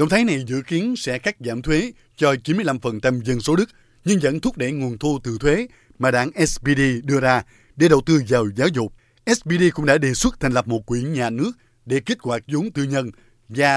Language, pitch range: Vietnamese, 120-150 Hz